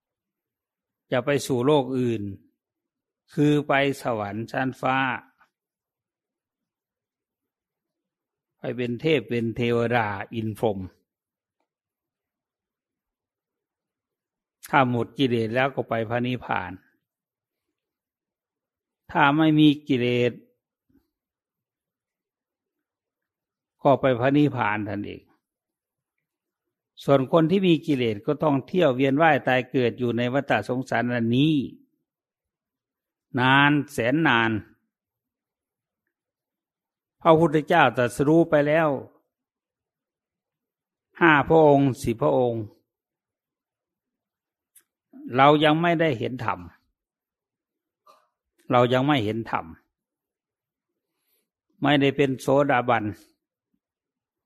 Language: English